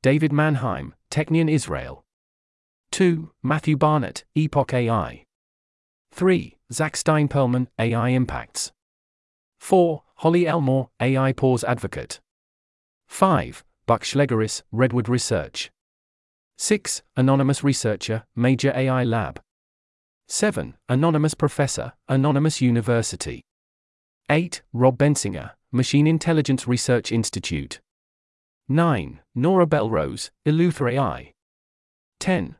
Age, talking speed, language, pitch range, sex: 40-59, 90 wpm, English, 110-150 Hz, male